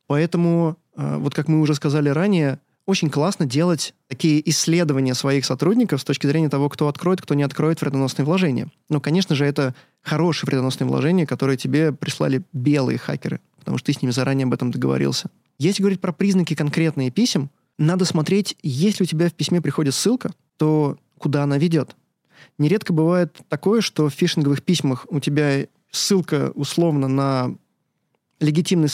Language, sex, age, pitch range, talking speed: Russian, male, 20-39, 140-170 Hz, 160 wpm